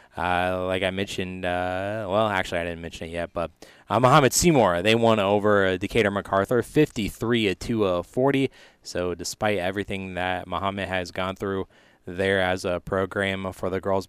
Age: 20-39